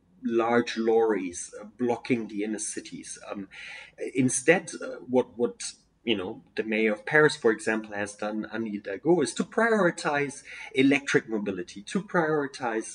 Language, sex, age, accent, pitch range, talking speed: French, male, 30-49, German, 110-155 Hz, 135 wpm